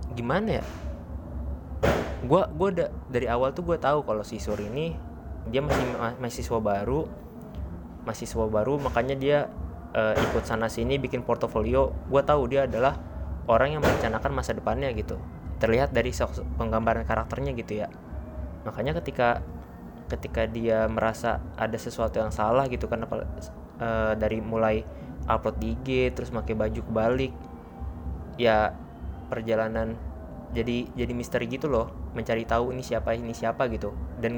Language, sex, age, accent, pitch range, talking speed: Indonesian, male, 20-39, native, 85-120 Hz, 140 wpm